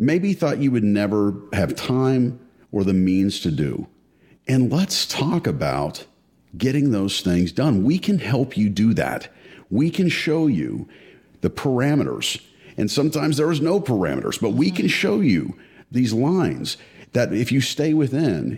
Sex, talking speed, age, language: male, 160 wpm, 50-69, English